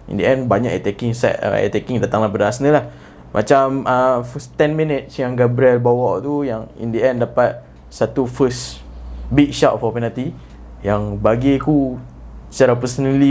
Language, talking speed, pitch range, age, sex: Malay, 165 wpm, 105-130 Hz, 20-39, male